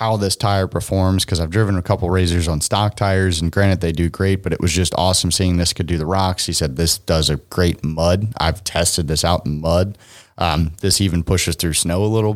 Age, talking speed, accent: 30-49, 245 wpm, American